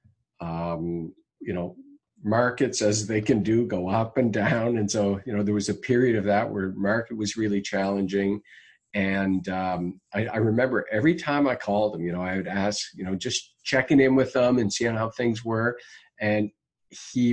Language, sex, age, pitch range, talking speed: English, male, 50-69, 100-120 Hz, 195 wpm